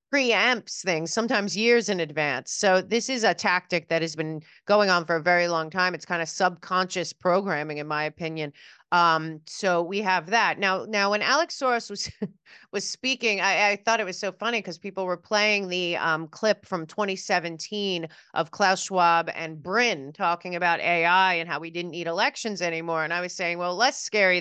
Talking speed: 195 wpm